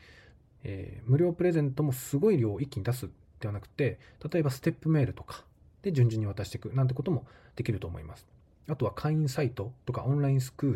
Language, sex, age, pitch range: Japanese, male, 20-39, 100-135 Hz